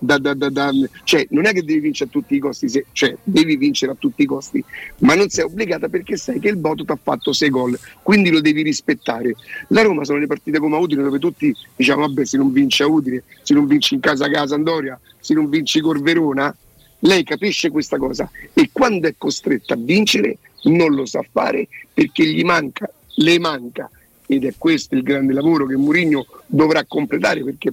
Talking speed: 210 wpm